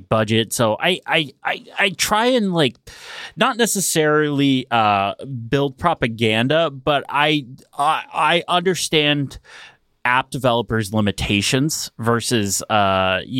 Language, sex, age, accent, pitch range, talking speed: English, male, 30-49, American, 110-150 Hz, 110 wpm